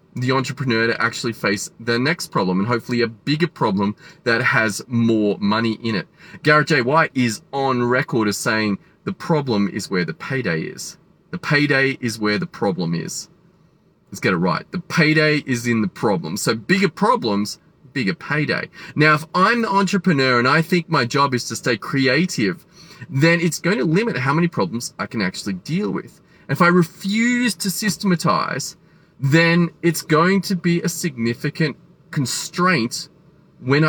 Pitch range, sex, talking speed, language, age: 115-170 Hz, male, 170 wpm, English, 30-49